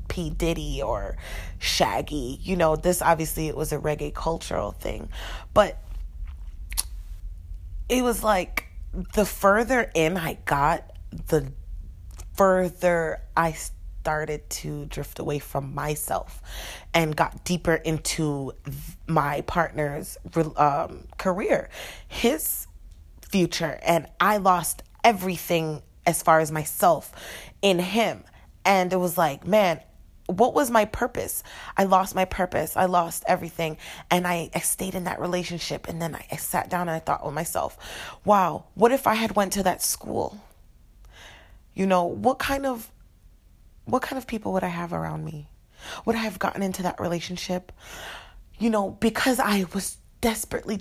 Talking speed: 145 wpm